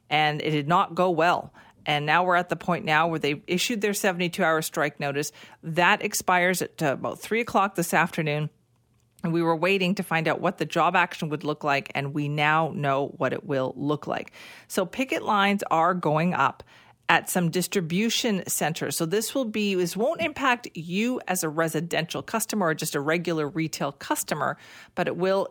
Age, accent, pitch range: 40-59, American, 150-185 Hz